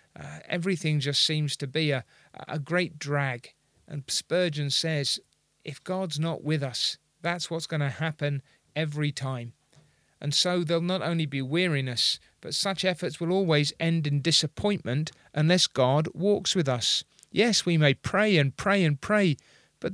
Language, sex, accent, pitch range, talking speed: English, male, British, 145-180 Hz, 165 wpm